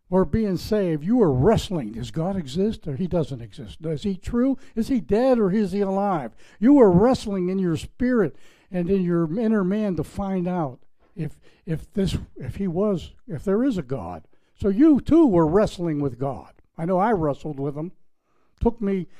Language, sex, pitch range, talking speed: English, male, 145-195 Hz, 195 wpm